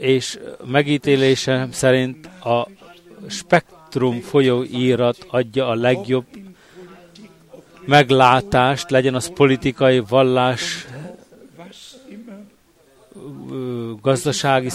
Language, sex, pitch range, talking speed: Hungarian, male, 130-175 Hz, 60 wpm